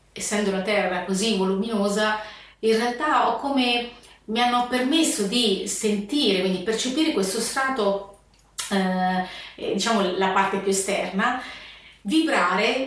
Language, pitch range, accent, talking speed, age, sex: Italian, 195-235 Hz, native, 115 wpm, 30-49, female